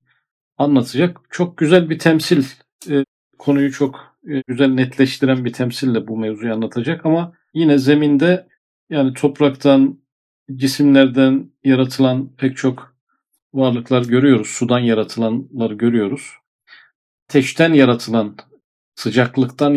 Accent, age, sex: native, 40-59, male